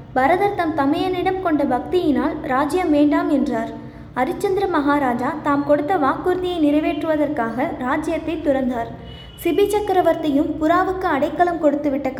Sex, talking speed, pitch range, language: female, 105 wpm, 280-340 Hz, Tamil